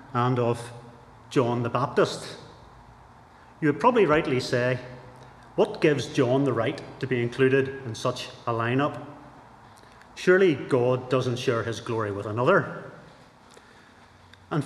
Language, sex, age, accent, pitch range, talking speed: English, male, 30-49, British, 125-160 Hz, 125 wpm